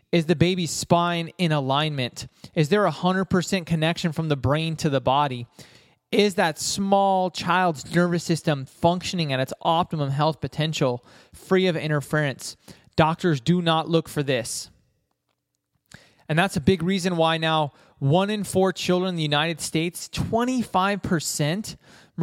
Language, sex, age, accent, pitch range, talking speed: English, male, 20-39, American, 150-190 Hz, 145 wpm